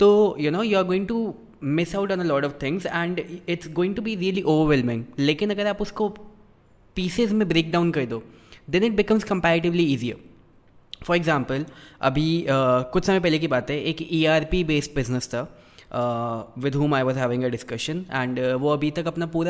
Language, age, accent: English, 20-39, Indian